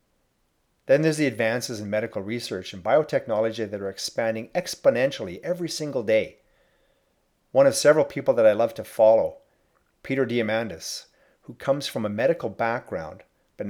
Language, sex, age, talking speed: English, male, 40-59, 150 wpm